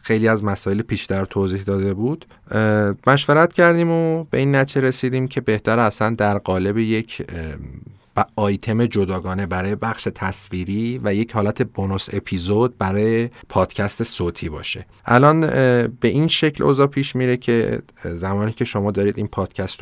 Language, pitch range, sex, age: Persian, 95-120 Hz, male, 40-59